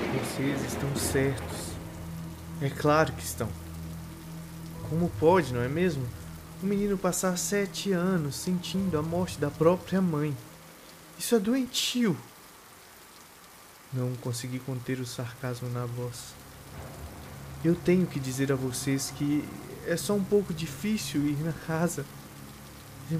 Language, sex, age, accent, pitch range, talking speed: Portuguese, male, 20-39, Brazilian, 125-170 Hz, 125 wpm